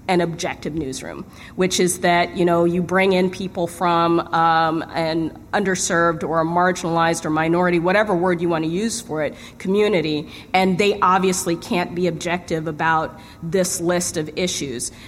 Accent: American